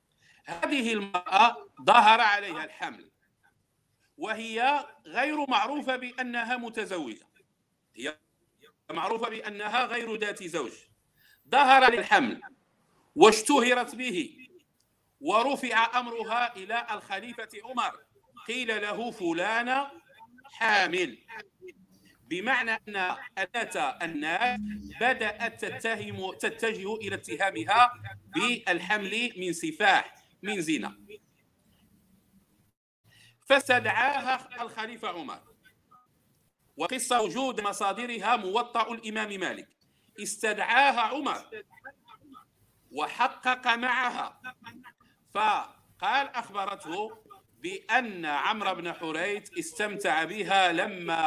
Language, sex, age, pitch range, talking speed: Arabic, male, 50-69, 205-260 Hz, 75 wpm